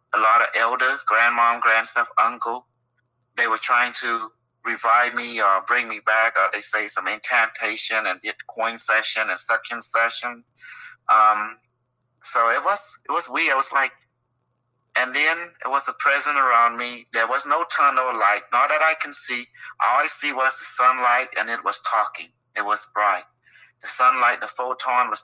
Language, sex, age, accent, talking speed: English, male, 30-49, American, 180 wpm